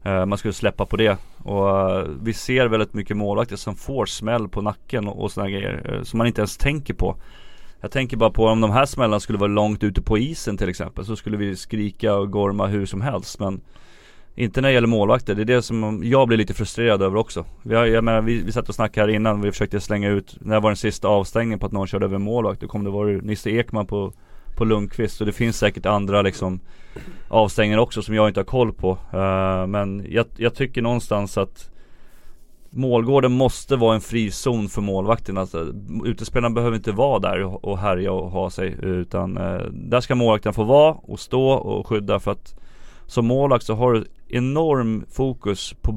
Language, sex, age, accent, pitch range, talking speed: Swedish, male, 30-49, native, 100-115 Hz, 220 wpm